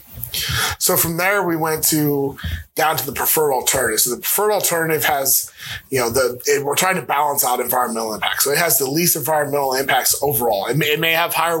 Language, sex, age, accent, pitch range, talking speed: English, male, 20-39, American, 130-175 Hz, 210 wpm